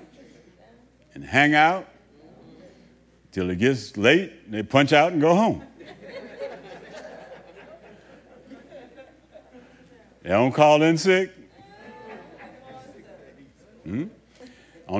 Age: 60-79